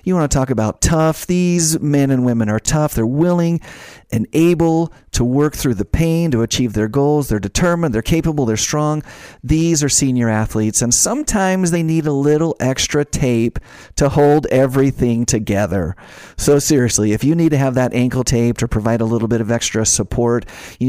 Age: 40-59